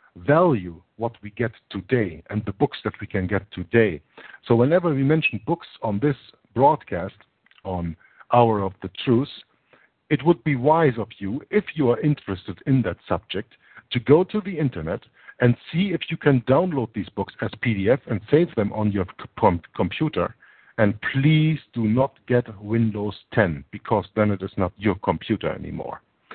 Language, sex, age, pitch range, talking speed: English, male, 60-79, 105-135 Hz, 170 wpm